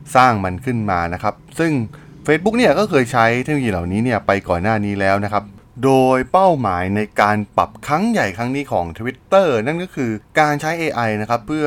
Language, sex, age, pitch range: Thai, male, 20-39, 100-135 Hz